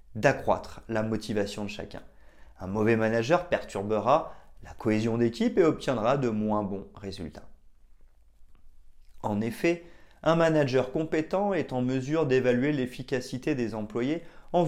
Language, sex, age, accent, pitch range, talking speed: French, male, 30-49, French, 105-135 Hz, 125 wpm